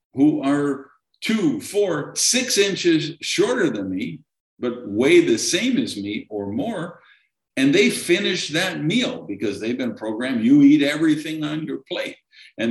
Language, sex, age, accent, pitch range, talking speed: English, male, 50-69, American, 120-200 Hz, 155 wpm